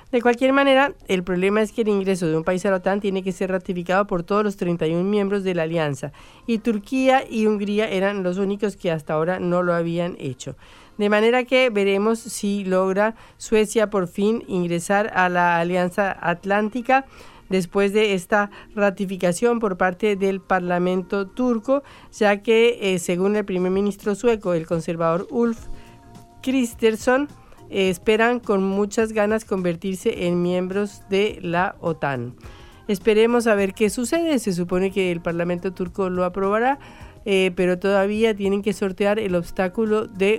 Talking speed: 160 wpm